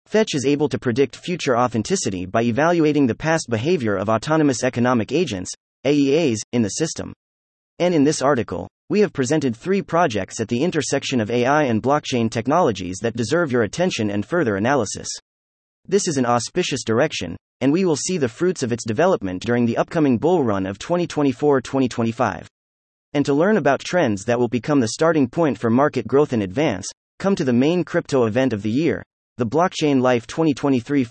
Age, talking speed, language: 30-49, 180 wpm, English